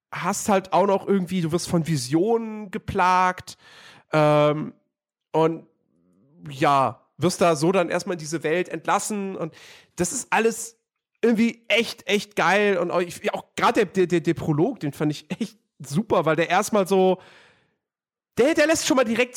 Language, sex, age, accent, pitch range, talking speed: German, male, 40-59, German, 160-220 Hz, 165 wpm